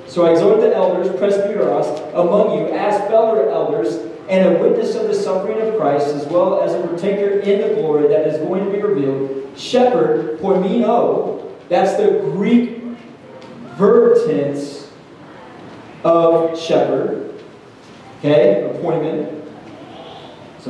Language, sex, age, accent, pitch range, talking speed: English, male, 30-49, American, 160-205 Hz, 130 wpm